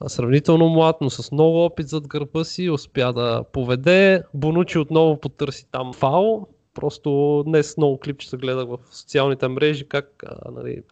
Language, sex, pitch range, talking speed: Bulgarian, male, 135-170 Hz, 155 wpm